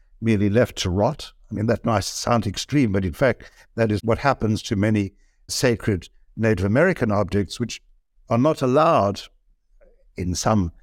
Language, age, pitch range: English, 60-79, 105-125 Hz